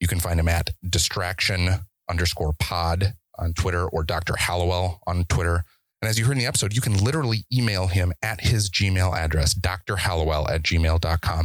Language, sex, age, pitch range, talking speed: English, male, 30-49, 80-100 Hz, 180 wpm